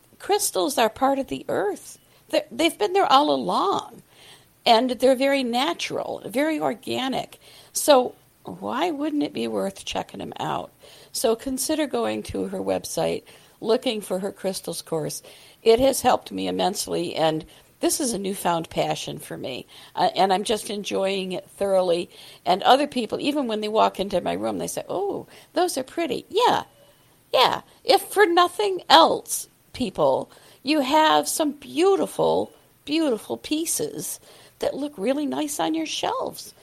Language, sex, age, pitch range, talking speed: English, female, 60-79, 185-295 Hz, 155 wpm